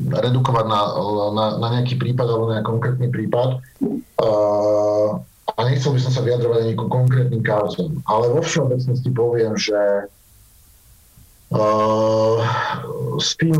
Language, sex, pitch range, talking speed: Slovak, male, 110-130 Hz, 130 wpm